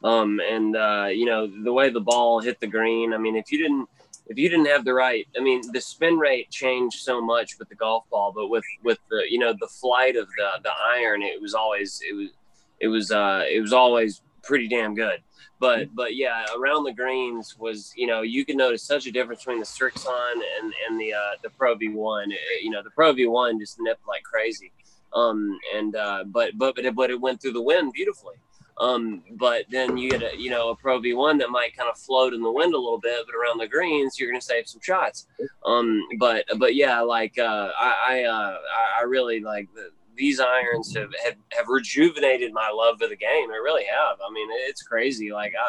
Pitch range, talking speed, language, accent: 115-150 Hz, 230 wpm, English, American